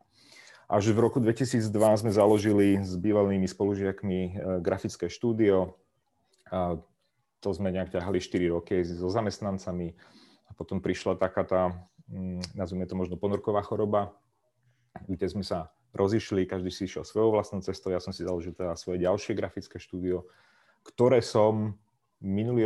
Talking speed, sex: 135 wpm, male